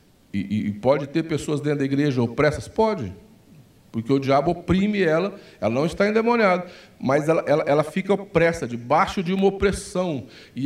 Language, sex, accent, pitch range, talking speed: Portuguese, male, Brazilian, 130-190 Hz, 170 wpm